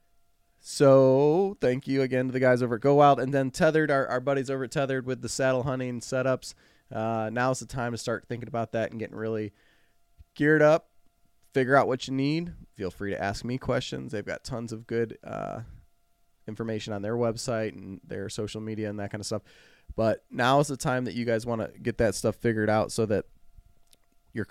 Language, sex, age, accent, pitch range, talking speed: English, male, 20-39, American, 105-130 Hz, 215 wpm